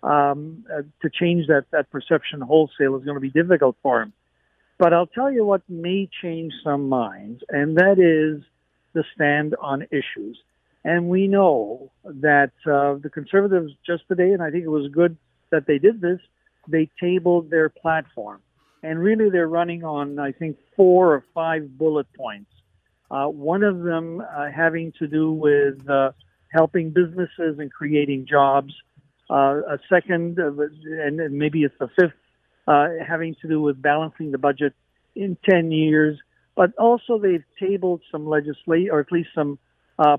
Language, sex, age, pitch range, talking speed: English, male, 60-79, 145-175 Hz, 165 wpm